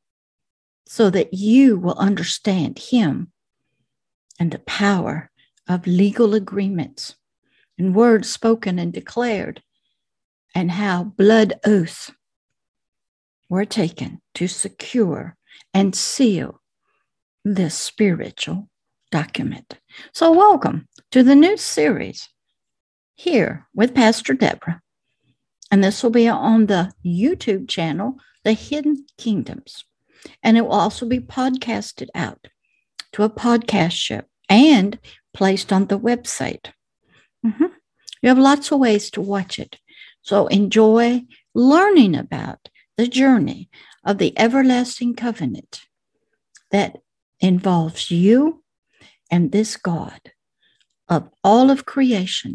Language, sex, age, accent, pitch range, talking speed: English, female, 60-79, American, 195-255 Hz, 110 wpm